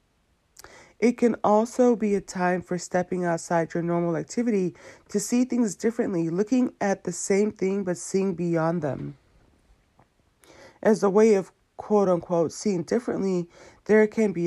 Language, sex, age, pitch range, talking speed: English, female, 30-49, 170-215 Hz, 145 wpm